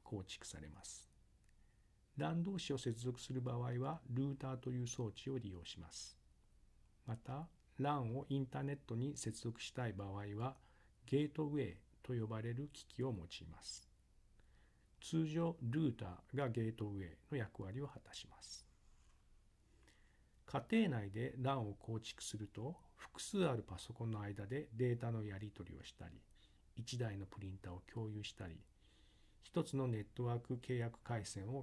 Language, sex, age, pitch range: Japanese, male, 50-69, 100-130 Hz